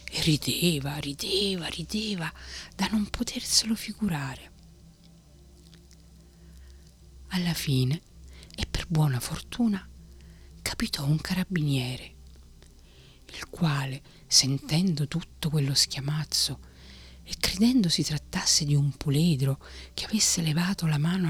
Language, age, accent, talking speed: Italian, 40-59, native, 100 wpm